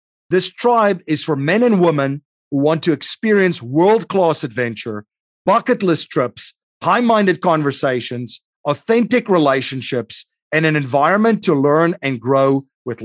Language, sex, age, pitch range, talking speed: English, male, 40-59, 145-205 Hz, 130 wpm